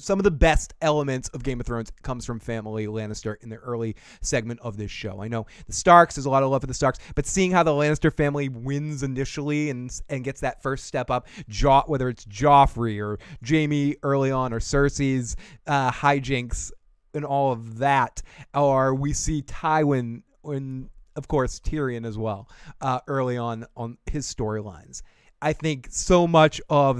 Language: English